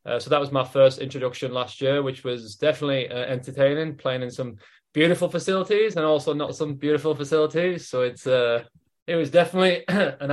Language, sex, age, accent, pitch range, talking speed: English, male, 20-39, British, 130-165 Hz, 185 wpm